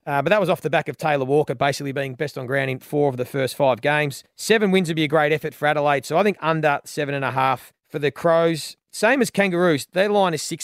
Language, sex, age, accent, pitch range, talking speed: English, male, 30-49, Australian, 145-175 Hz, 275 wpm